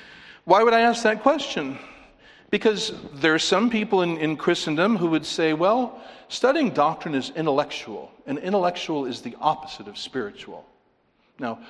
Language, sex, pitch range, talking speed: English, male, 155-210 Hz, 155 wpm